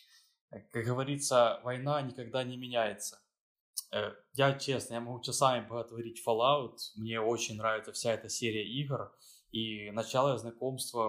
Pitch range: 115-135 Hz